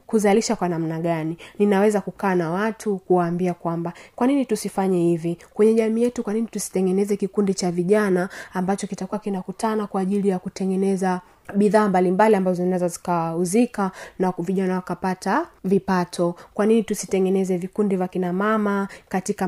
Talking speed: 145 wpm